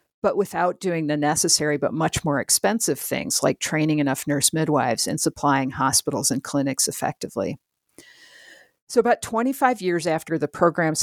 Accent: American